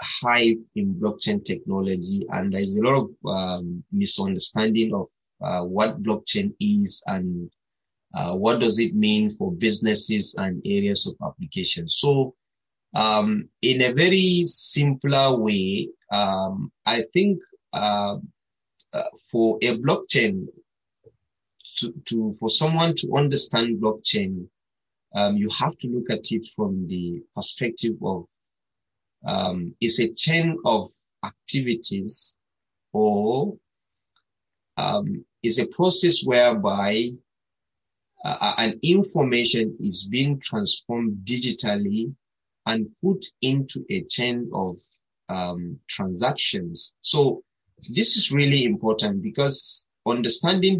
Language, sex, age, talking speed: English, male, 30-49, 110 wpm